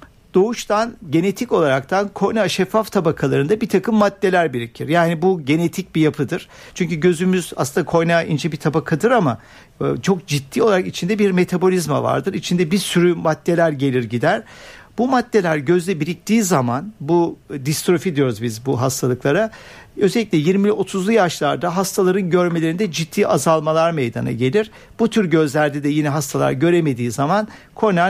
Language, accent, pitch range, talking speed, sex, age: Turkish, native, 155-195 Hz, 140 wpm, male, 60-79